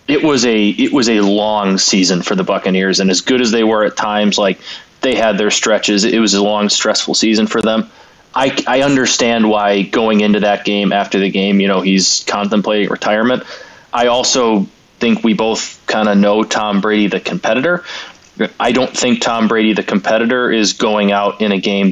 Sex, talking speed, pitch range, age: male, 200 wpm, 100-115 Hz, 20-39